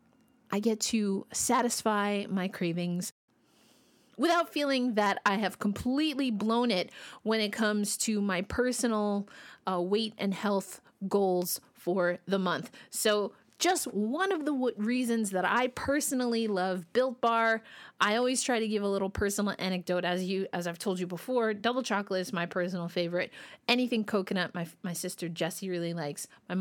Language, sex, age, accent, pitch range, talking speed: English, female, 30-49, American, 190-250 Hz, 160 wpm